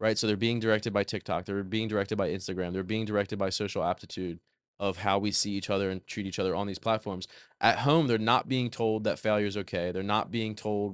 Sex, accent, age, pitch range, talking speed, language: male, American, 20-39, 100-115 Hz, 245 wpm, English